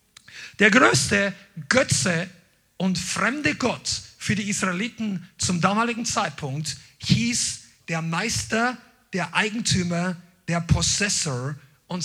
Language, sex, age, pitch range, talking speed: German, male, 40-59, 155-215 Hz, 100 wpm